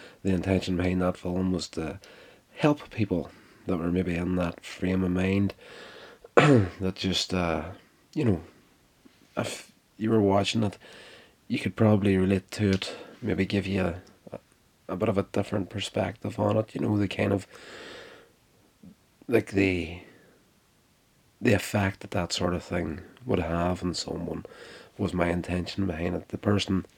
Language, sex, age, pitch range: English, male, 30-49, 90-100 Hz